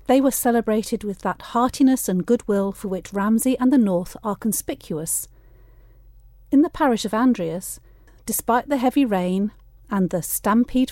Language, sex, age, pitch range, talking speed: English, female, 40-59, 180-245 Hz, 155 wpm